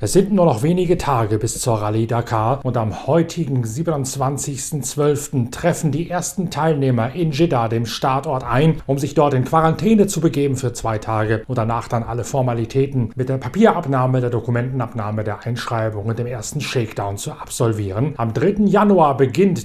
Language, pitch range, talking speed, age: German, 120-160 Hz, 170 wpm, 40-59